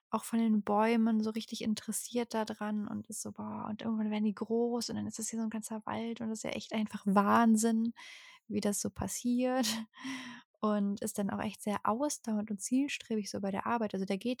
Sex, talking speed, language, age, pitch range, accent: female, 225 wpm, German, 20-39, 200-235 Hz, German